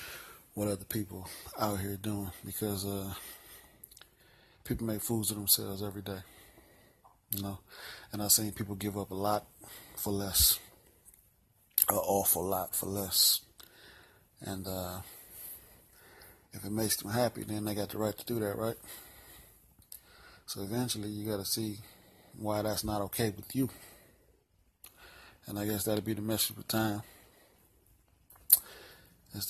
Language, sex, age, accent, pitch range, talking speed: English, male, 30-49, American, 100-110 Hz, 140 wpm